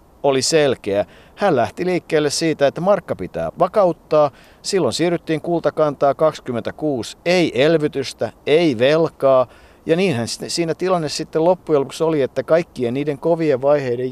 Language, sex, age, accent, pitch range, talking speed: Finnish, male, 50-69, native, 115-155 Hz, 130 wpm